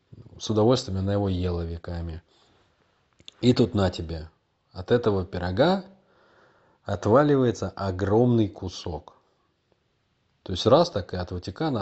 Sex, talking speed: male, 115 wpm